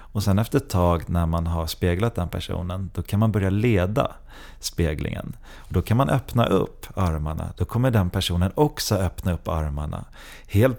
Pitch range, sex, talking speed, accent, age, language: 90-115 Hz, male, 180 wpm, native, 30-49, Swedish